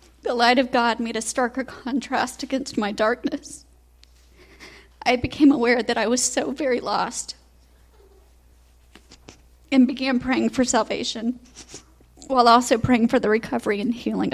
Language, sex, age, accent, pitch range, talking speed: English, female, 40-59, American, 215-250 Hz, 140 wpm